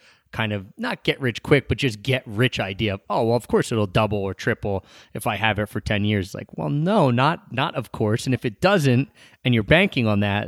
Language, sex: English, male